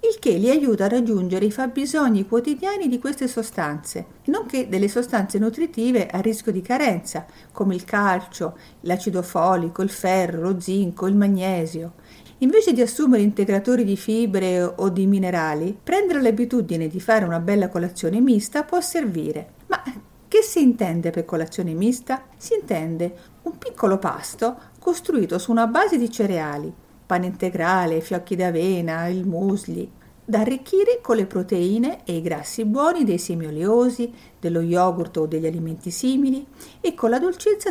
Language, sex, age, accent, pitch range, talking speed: Italian, female, 50-69, native, 175-260 Hz, 155 wpm